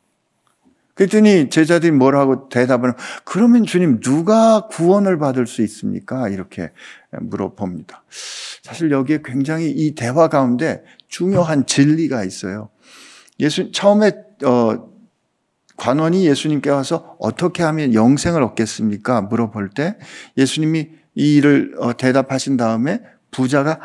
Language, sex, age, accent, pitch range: Korean, male, 50-69, native, 125-180 Hz